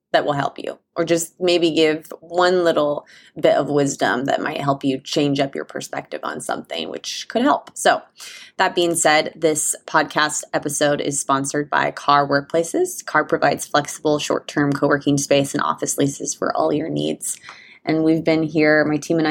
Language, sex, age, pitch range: English, female, 20-39, 145-160 Hz